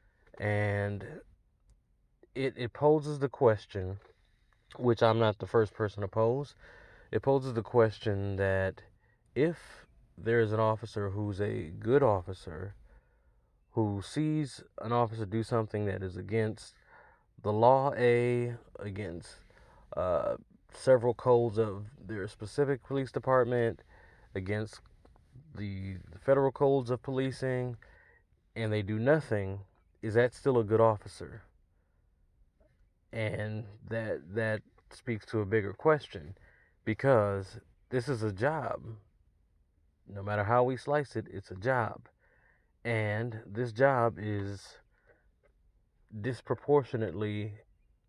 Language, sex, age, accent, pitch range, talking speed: English, male, 30-49, American, 100-120 Hz, 115 wpm